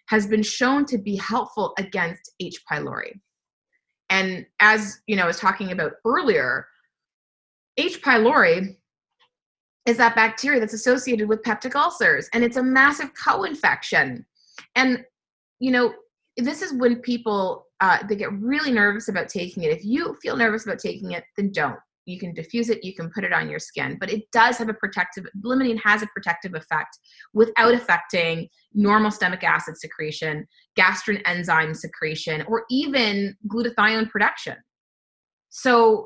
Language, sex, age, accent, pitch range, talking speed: English, female, 30-49, American, 175-235 Hz, 155 wpm